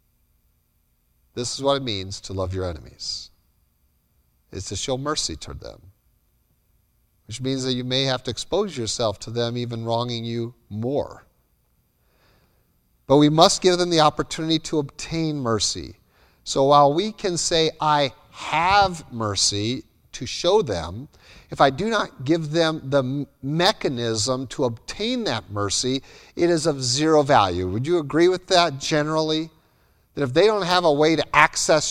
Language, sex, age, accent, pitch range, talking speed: English, male, 50-69, American, 115-165 Hz, 155 wpm